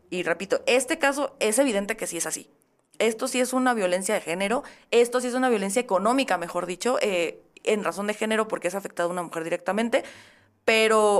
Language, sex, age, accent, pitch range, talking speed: Spanish, female, 30-49, Mexican, 185-225 Hz, 205 wpm